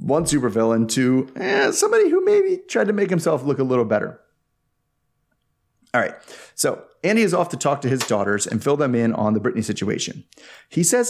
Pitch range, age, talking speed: 115-155 Hz, 30-49, 195 wpm